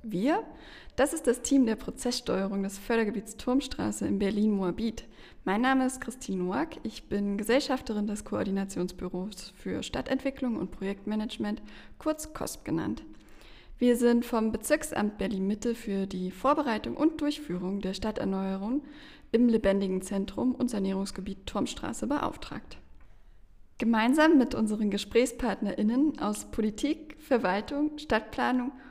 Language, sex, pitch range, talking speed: German, female, 200-255 Hz, 115 wpm